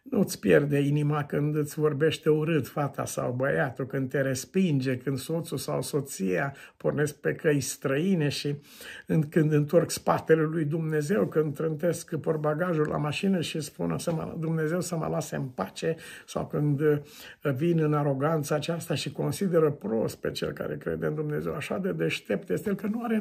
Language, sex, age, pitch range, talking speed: Romanian, male, 60-79, 130-165 Hz, 170 wpm